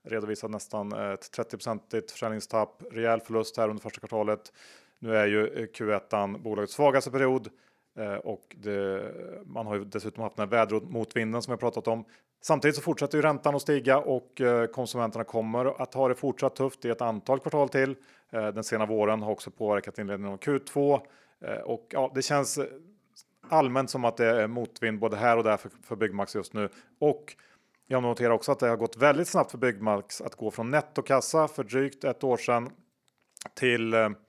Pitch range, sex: 110-135 Hz, male